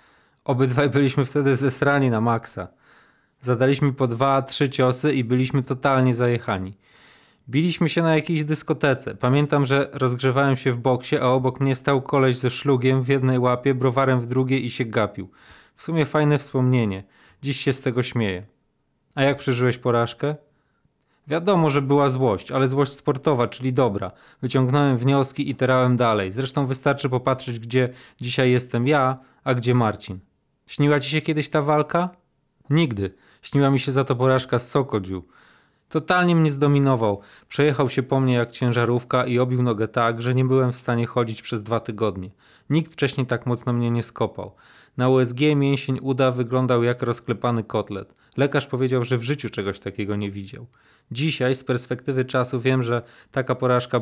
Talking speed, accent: 165 wpm, native